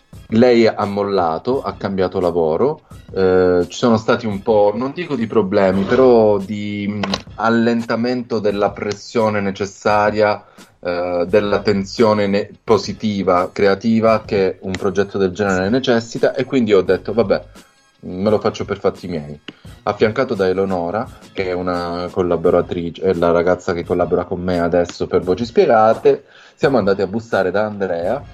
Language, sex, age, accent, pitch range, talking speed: Italian, male, 30-49, native, 90-110 Hz, 145 wpm